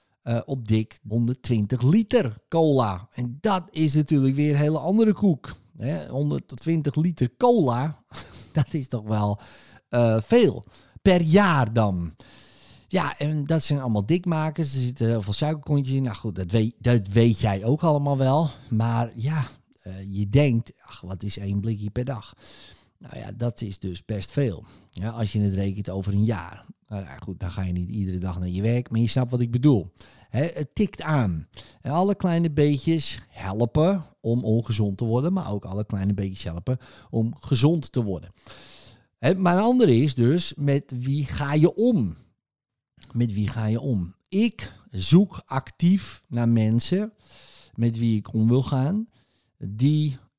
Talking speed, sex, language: 170 wpm, male, Dutch